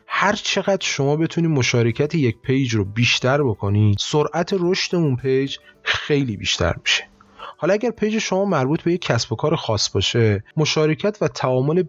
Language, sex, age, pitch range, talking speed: Persian, male, 30-49, 120-170 Hz, 160 wpm